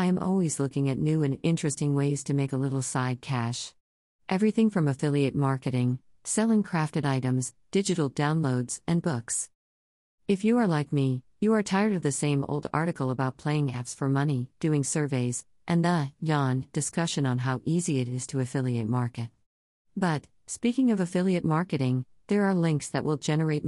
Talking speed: 170 wpm